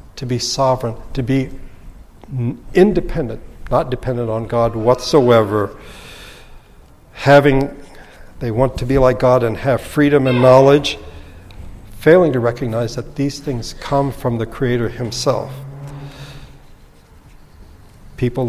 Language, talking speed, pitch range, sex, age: English, 115 wpm, 115-140 Hz, male, 60-79